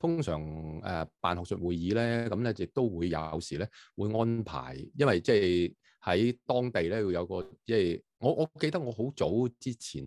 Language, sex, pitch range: Chinese, male, 80-120 Hz